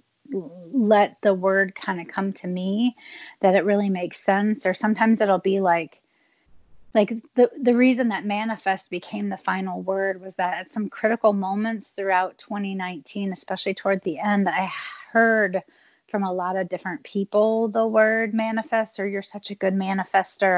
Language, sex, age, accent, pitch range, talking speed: English, female, 30-49, American, 180-220 Hz, 165 wpm